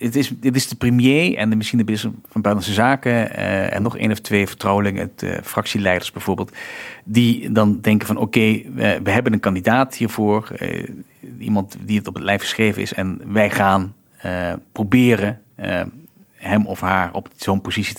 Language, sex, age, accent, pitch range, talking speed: Dutch, male, 40-59, Dutch, 100-120 Hz, 190 wpm